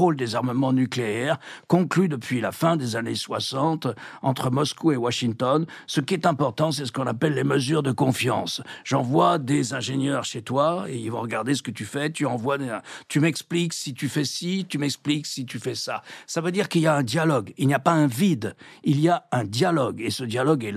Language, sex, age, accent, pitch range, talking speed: French, male, 60-79, French, 130-170 Hz, 220 wpm